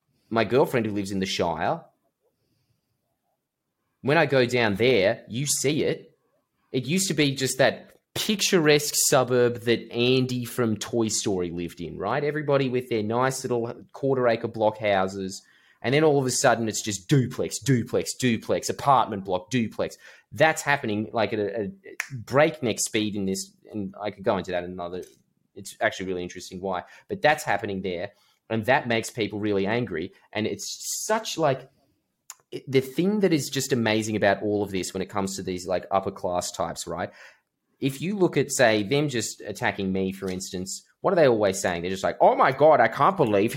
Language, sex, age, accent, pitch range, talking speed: English, male, 20-39, Australian, 100-140 Hz, 185 wpm